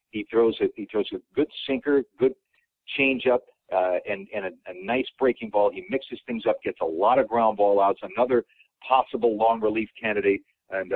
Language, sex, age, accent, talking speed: English, male, 60-79, American, 190 wpm